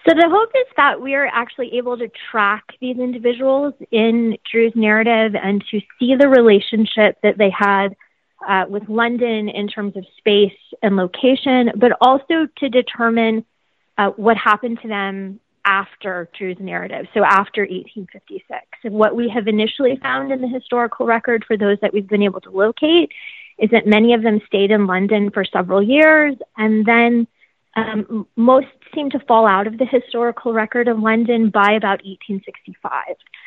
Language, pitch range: English, 200-240 Hz